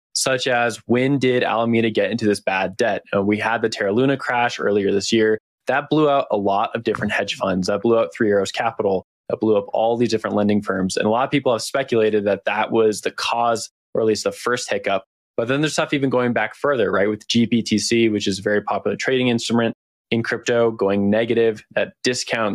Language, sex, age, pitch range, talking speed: English, male, 20-39, 105-120 Hz, 225 wpm